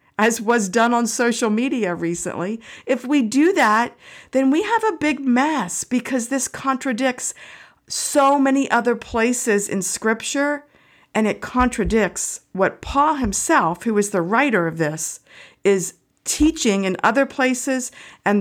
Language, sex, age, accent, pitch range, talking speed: English, female, 50-69, American, 180-240 Hz, 145 wpm